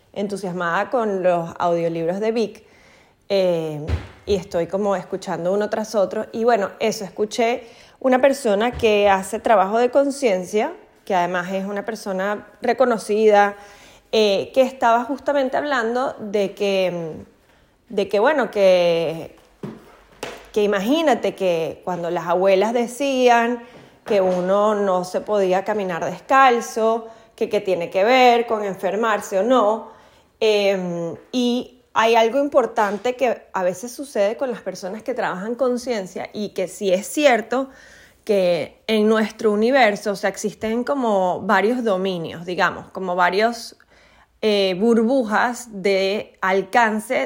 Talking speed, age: 125 wpm, 20-39